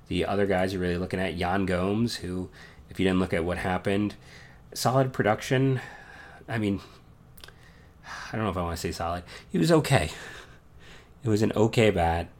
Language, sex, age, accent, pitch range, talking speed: English, male, 30-49, American, 90-105 Hz, 185 wpm